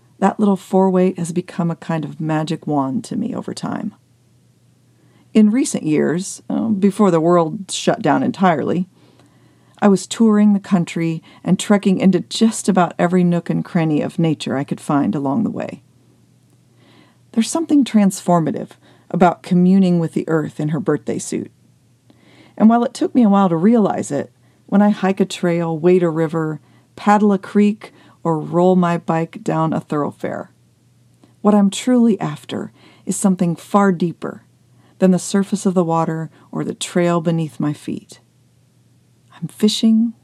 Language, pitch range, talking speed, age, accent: English, 165-205 Hz, 160 wpm, 40-59, American